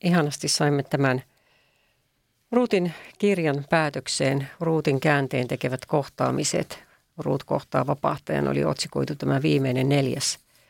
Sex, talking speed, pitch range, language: female, 100 wpm, 130-170 Hz, Finnish